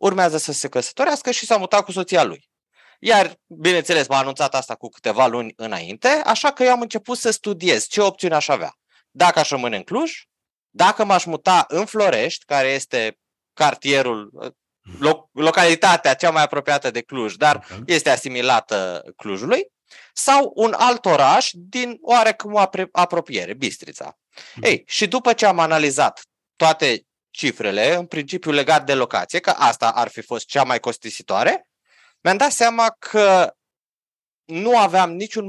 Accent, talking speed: native, 150 wpm